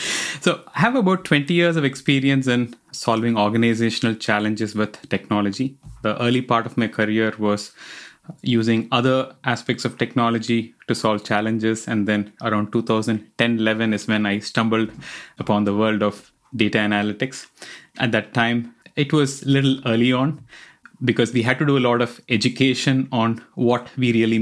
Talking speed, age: 160 wpm, 20-39